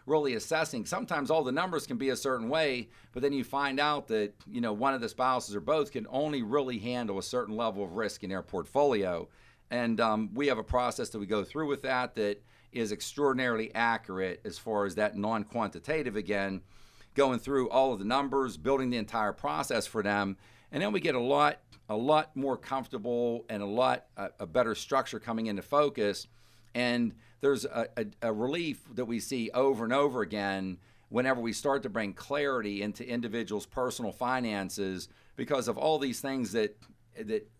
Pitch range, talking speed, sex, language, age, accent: 105-130 Hz, 190 wpm, male, English, 50-69, American